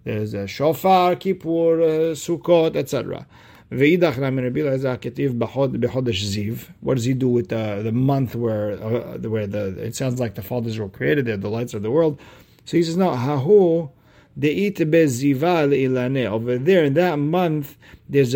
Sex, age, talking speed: male, 50-69, 135 wpm